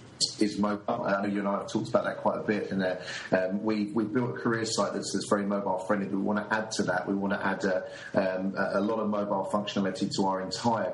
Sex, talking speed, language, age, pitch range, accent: male, 275 wpm, English, 40-59, 100-110 Hz, British